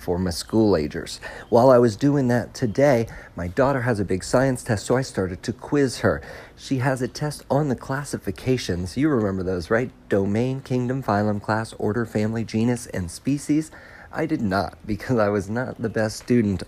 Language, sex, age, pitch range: English, male, 40-59, 105-140 Hz